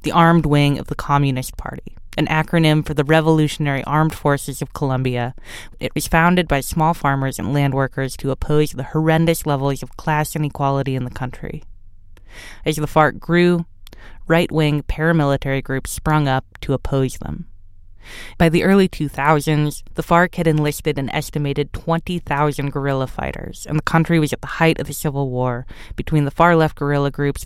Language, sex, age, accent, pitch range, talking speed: English, female, 20-39, American, 130-155 Hz, 170 wpm